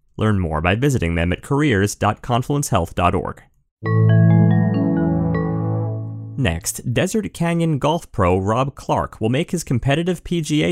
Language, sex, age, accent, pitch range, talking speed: English, male, 30-49, American, 100-140 Hz, 105 wpm